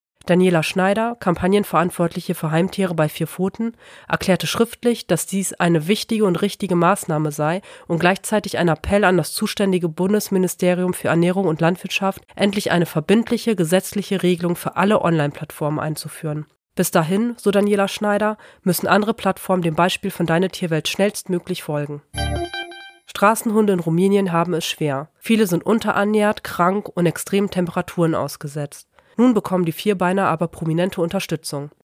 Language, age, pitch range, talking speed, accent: German, 30-49, 165-200 Hz, 140 wpm, German